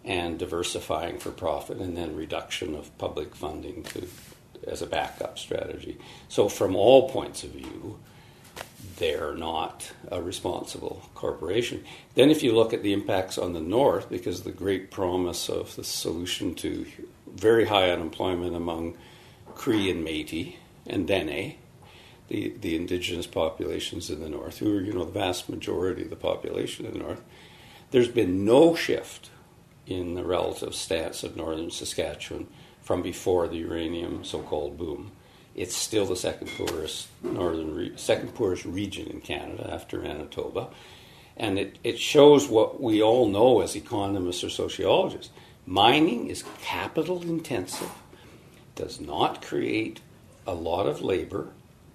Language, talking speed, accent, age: English, 145 wpm, American, 60-79